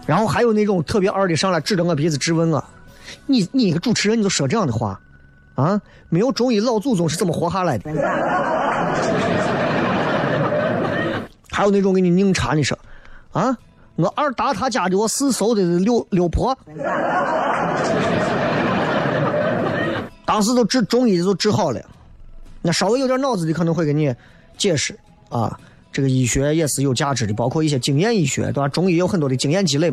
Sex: male